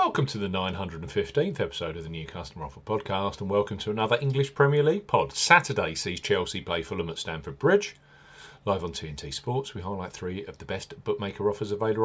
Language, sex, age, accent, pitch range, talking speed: English, male, 40-59, British, 90-135 Hz, 200 wpm